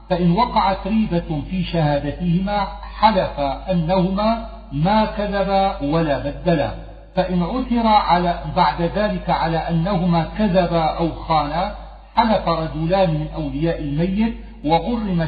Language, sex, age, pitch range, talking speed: Arabic, male, 50-69, 155-195 Hz, 105 wpm